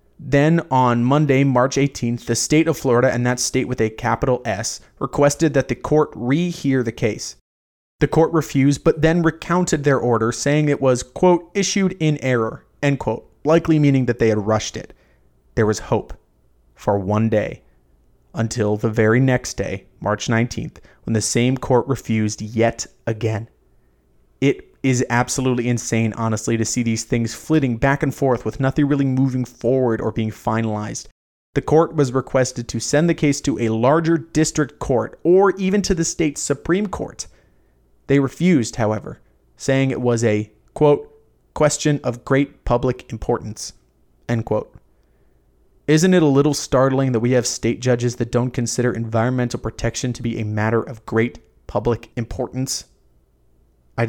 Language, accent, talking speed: English, American, 165 wpm